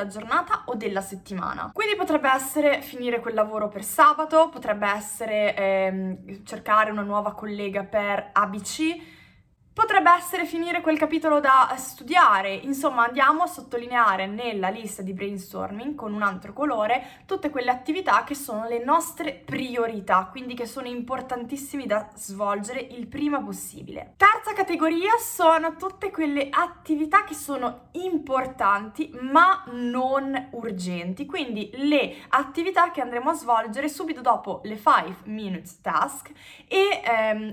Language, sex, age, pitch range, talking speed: Italian, female, 20-39, 215-300 Hz, 135 wpm